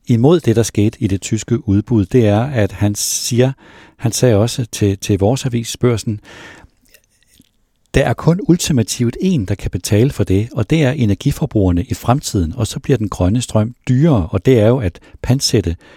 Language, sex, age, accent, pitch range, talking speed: Danish, male, 60-79, native, 100-130 Hz, 190 wpm